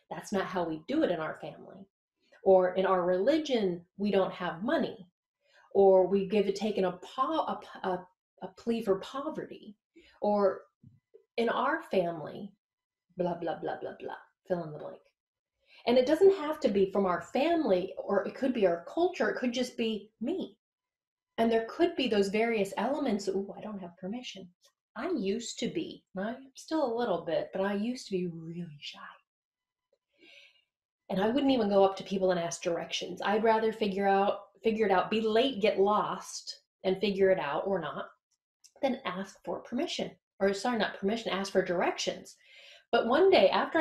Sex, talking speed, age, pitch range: female, 180 wpm, 30-49, 190-270 Hz